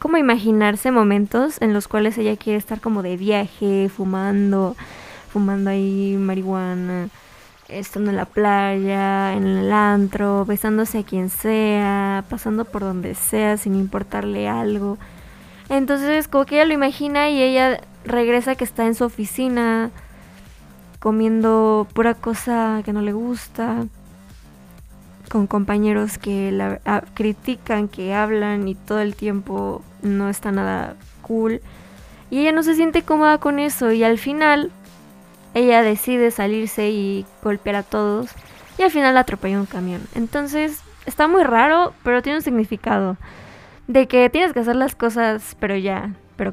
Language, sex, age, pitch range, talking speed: Spanish, female, 20-39, 195-245 Hz, 145 wpm